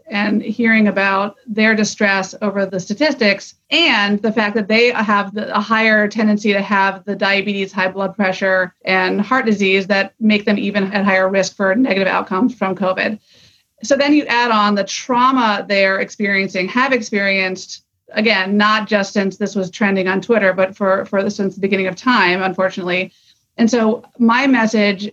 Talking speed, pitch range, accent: 175 wpm, 195-225 Hz, American